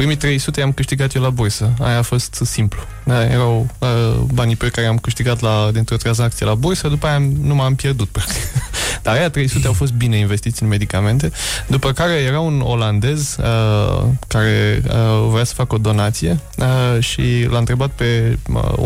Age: 20-39